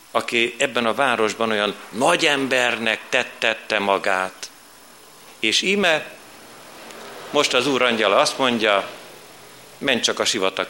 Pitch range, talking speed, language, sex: 105-150 Hz, 120 wpm, Hungarian, male